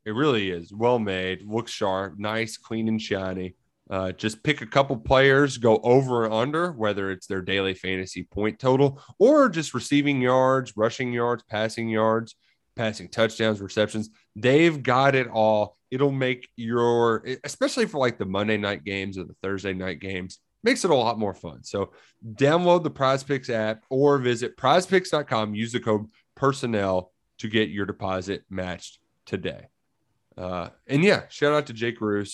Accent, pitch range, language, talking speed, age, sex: American, 100-130 Hz, English, 165 wpm, 30-49, male